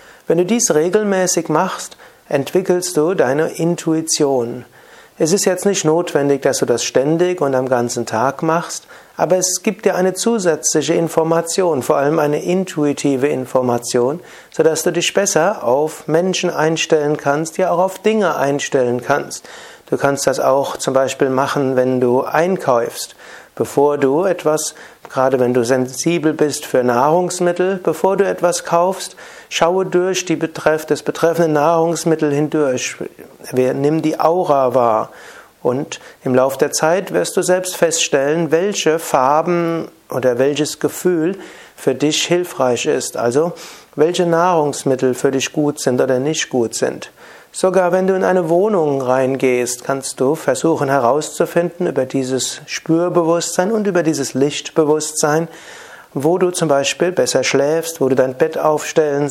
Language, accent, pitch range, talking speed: German, German, 135-175 Hz, 145 wpm